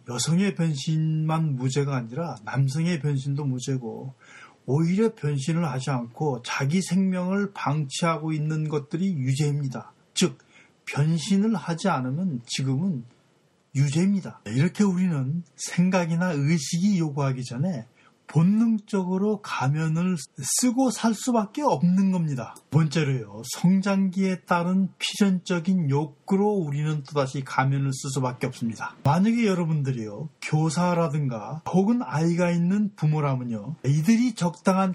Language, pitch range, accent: Korean, 140-190 Hz, native